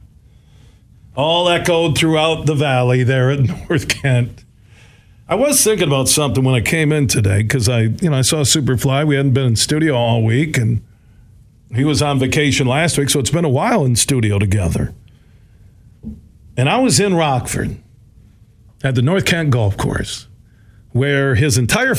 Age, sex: 50-69, male